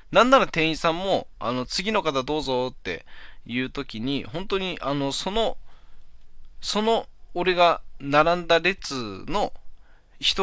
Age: 20-39